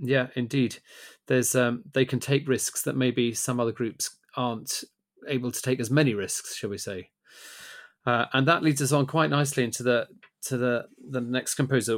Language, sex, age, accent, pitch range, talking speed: English, male, 30-49, British, 120-140 Hz, 190 wpm